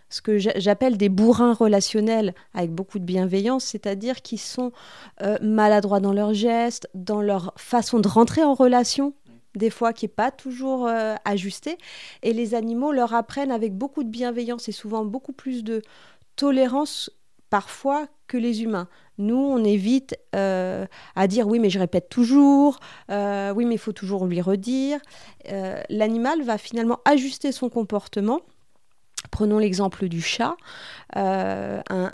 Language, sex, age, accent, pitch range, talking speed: French, female, 30-49, French, 195-255 Hz, 155 wpm